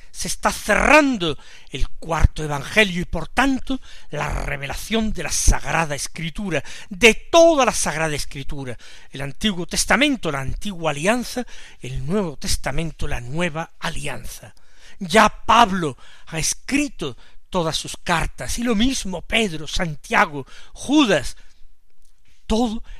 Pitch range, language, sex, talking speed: 150-215 Hz, Spanish, male, 120 wpm